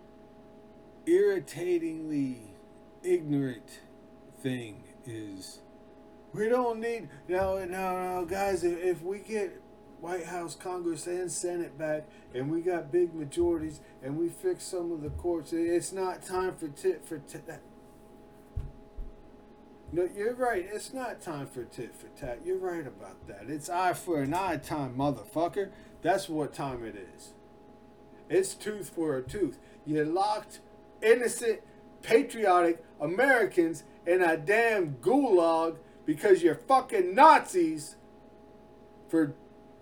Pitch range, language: 175-290 Hz, English